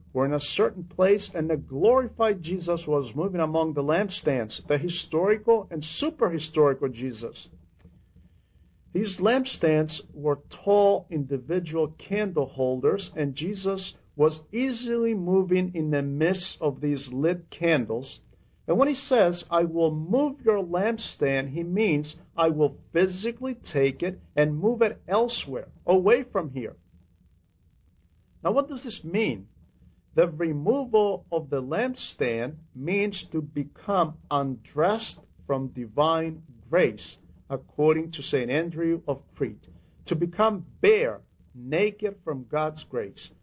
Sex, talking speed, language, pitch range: male, 125 wpm, English, 140-200 Hz